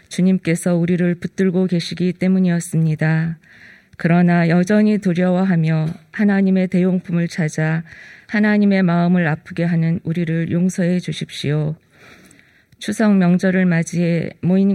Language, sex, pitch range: Korean, female, 170-190 Hz